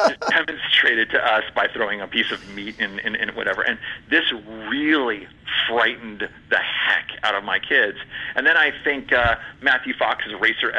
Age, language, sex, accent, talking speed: 40-59, English, male, American, 170 wpm